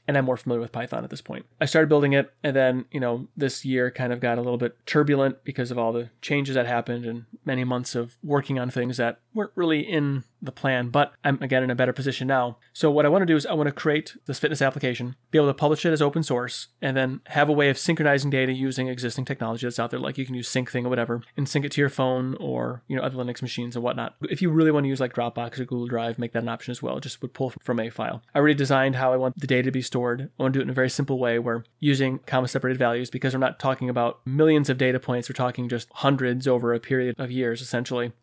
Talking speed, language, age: 280 wpm, English, 30-49